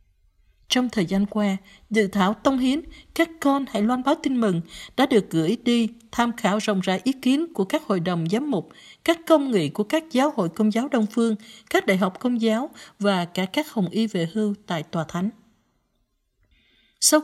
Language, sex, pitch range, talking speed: Vietnamese, female, 200-260 Hz, 200 wpm